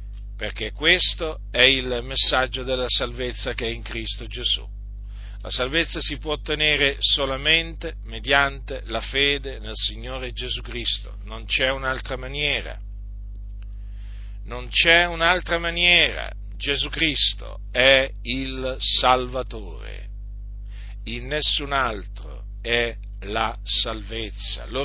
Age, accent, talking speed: 50-69, native, 110 wpm